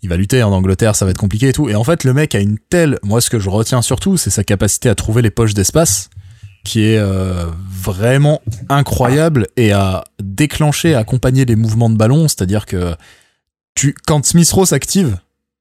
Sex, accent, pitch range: male, French, 105-135 Hz